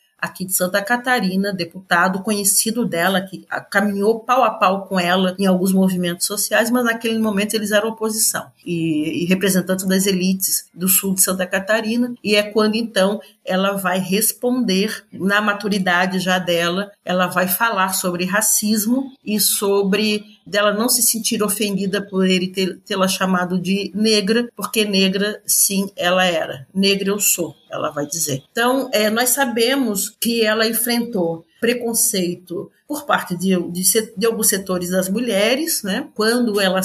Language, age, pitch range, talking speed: Portuguese, 40-59, 185-230 Hz, 150 wpm